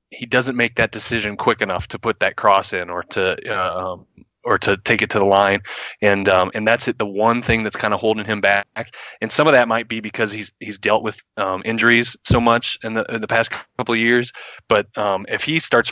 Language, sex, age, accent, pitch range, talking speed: English, male, 20-39, American, 105-125 Hz, 240 wpm